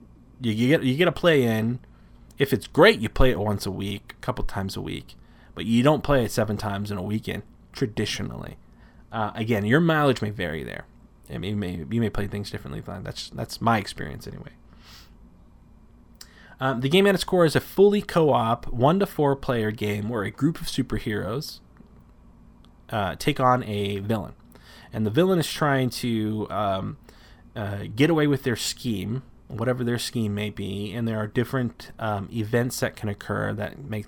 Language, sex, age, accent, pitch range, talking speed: English, male, 20-39, American, 105-130 Hz, 180 wpm